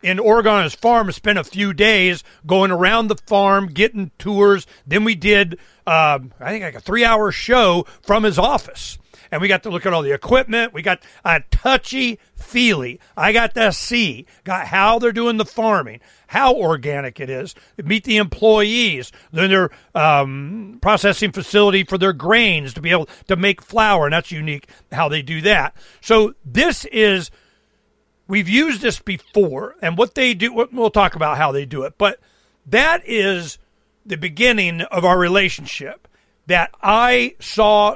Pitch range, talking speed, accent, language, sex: 165-220 Hz, 170 wpm, American, English, male